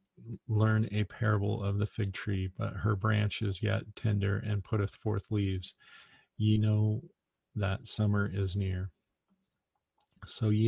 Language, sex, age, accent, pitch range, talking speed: English, male, 40-59, American, 100-110 Hz, 140 wpm